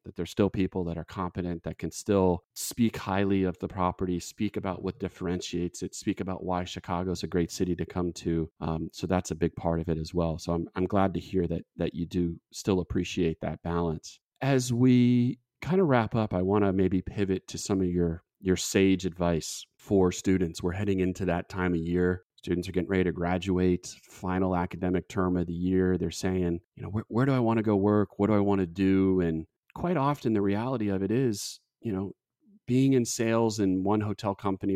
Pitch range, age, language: 85-100 Hz, 30-49, English